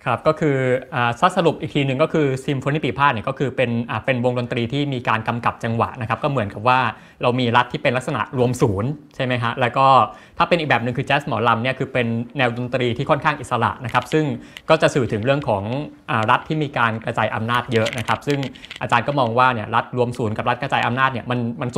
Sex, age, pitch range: male, 20-39, 115-140 Hz